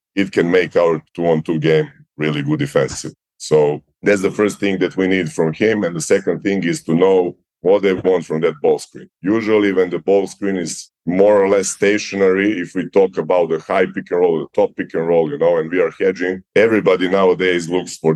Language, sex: English, male